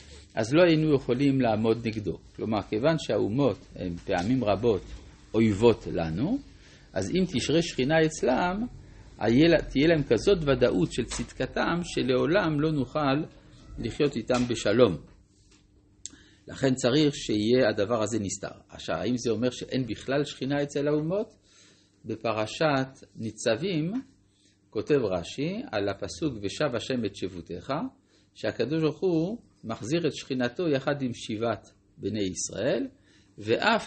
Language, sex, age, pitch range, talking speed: Hebrew, male, 50-69, 100-150 Hz, 120 wpm